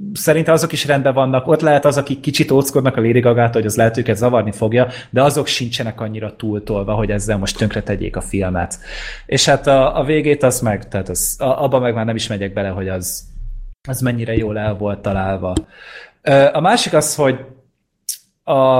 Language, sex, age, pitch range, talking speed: Hungarian, male, 30-49, 105-140 Hz, 190 wpm